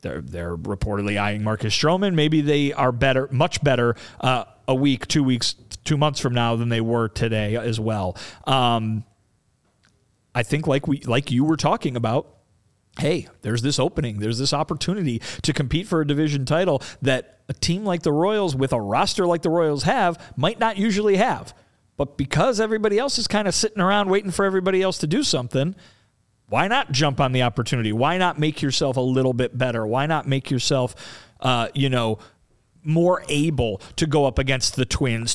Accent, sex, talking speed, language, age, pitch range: American, male, 190 wpm, English, 40-59, 115-155 Hz